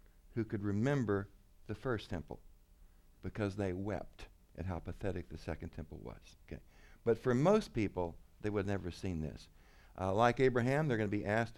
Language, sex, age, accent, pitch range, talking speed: English, male, 60-79, American, 90-135 Hz, 180 wpm